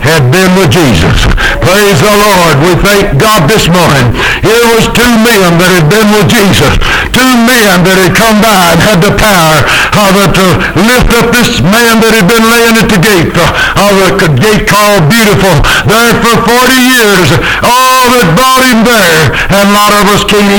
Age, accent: 60-79, American